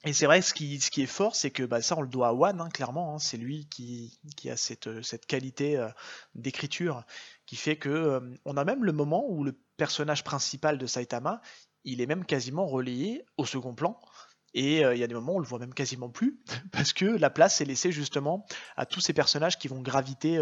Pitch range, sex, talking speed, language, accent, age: 130-155 Hz, male, 240 wpm, French, French, 20-39